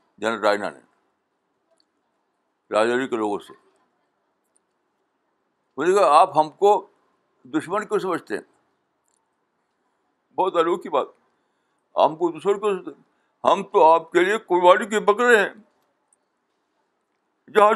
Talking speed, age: 100 wpm, 60-79